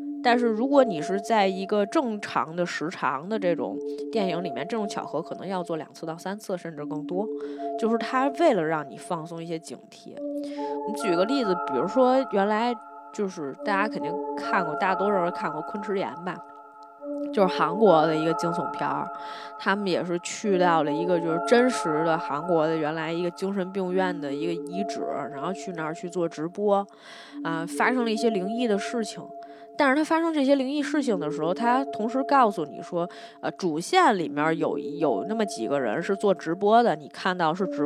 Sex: female